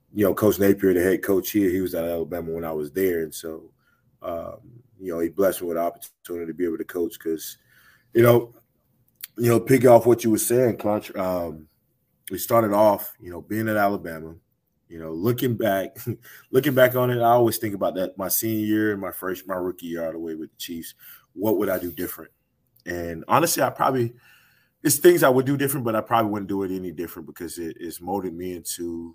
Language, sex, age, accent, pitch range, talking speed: English, male, 20-39, American, 90-115 Hz, 220 wpm